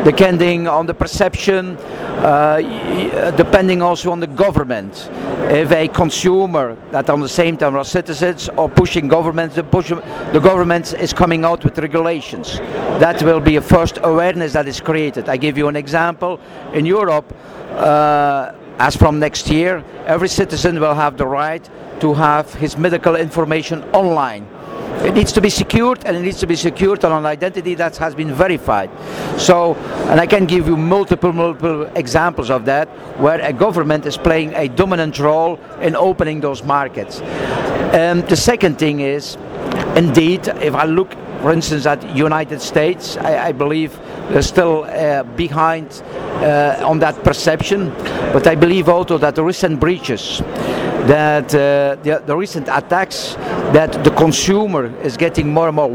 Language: English